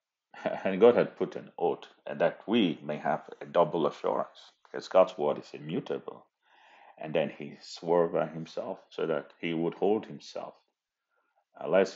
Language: English